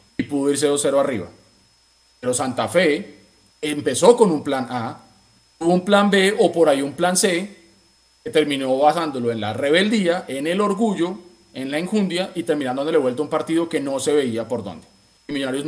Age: 30-49